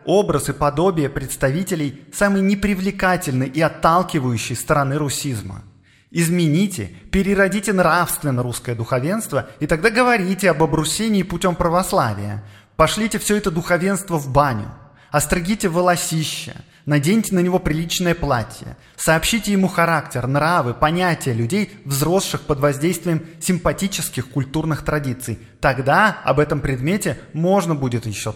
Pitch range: 125-180 Hz